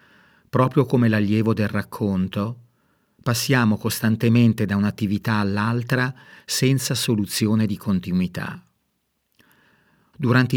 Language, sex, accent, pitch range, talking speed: Italian, male, native, 105-130 Hz, 85 wpm